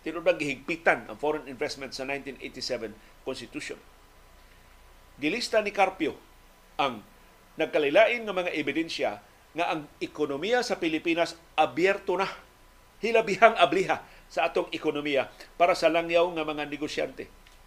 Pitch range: 155-205 Hz